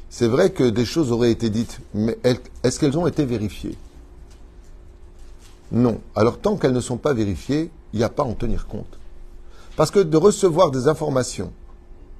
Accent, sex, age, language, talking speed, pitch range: French, male, 50-69, French, 175 wpm, 90-140 Hz